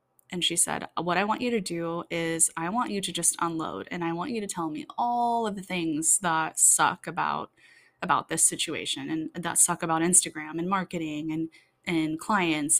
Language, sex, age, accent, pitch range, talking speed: English, female, 10-29, American, 165-200 Hz, 200 wpm